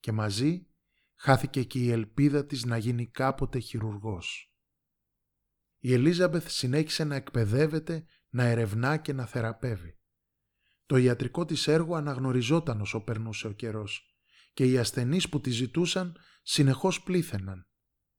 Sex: male